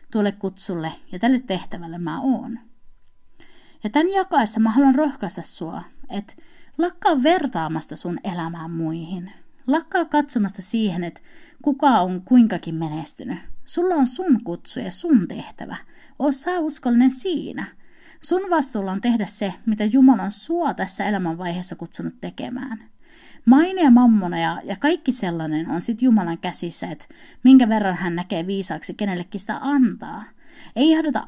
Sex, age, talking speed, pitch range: female, 30-49, 135 wpm, 185-280 Hz